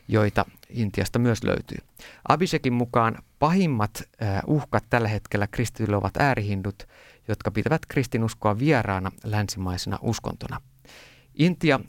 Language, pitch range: Finnish, 105-135 Hz